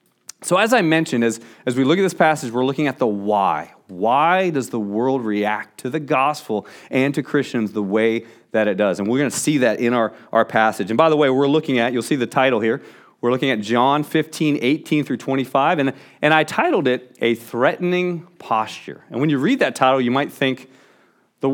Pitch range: 120-165 Hz